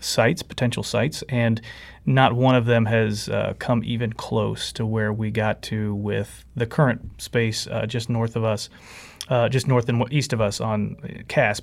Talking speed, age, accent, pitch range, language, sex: 185 wpm, 30-49, American, 115-145 Hz, English, male